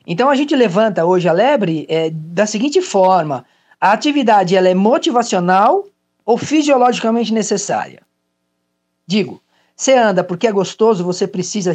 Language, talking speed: Portuguese, 140 wpm